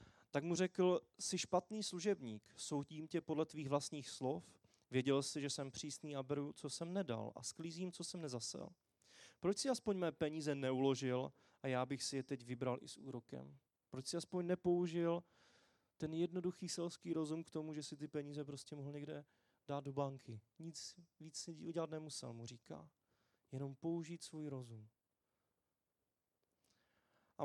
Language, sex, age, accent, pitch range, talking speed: Czech, male, 30-49, native, 130-160 Hz, 160 wpm